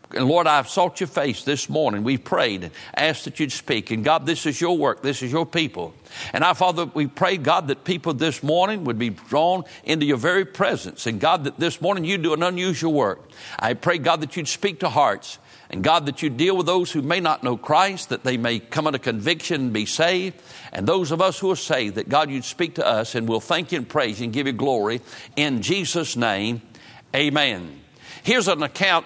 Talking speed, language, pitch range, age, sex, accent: 230 wpm, English, 140-175 Hz, 60-79, male, American